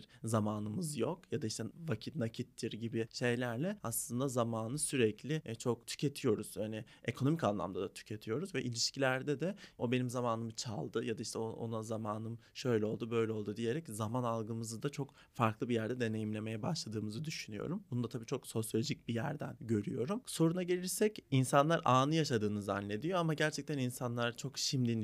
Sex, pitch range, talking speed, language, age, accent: male, 115-155 Hz, 155 wpm, Turkish, 30-49, native